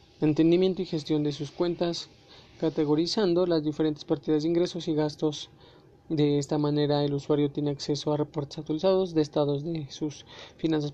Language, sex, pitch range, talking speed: Spanish, male, 150-170 Hz, 160 wpm